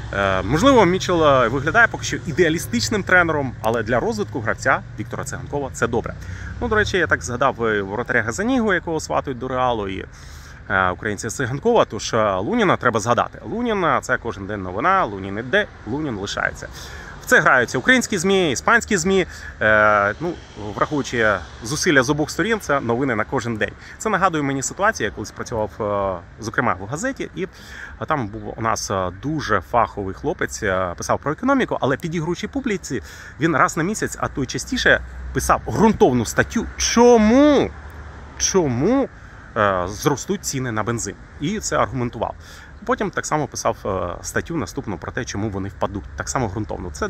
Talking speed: 150 wpm